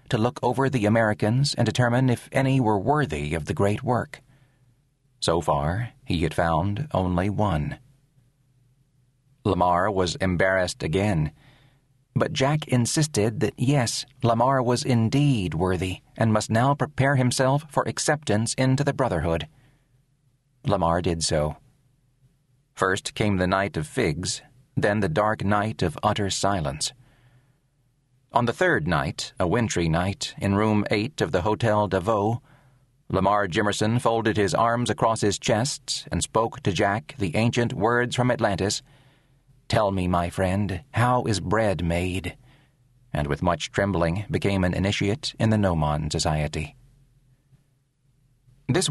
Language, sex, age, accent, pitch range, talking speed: English, male, 40-59, American, 100-135 Hz, 140 wpm